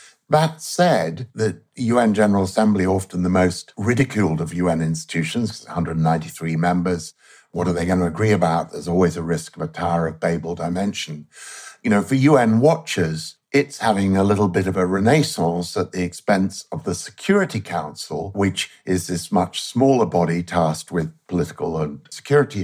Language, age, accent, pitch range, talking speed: English, 60-79, British, 85-105 Hz, 165 wpm